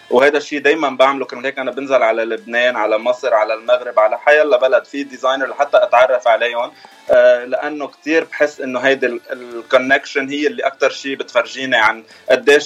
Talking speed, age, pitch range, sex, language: 185 wpm, 20-39, 125-155 Hz, male, Arabic